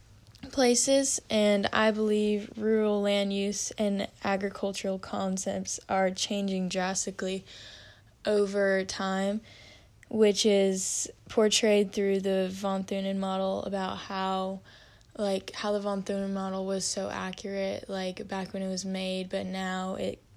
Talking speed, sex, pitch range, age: 125 wpm, female, 190-205 Hz, 10-29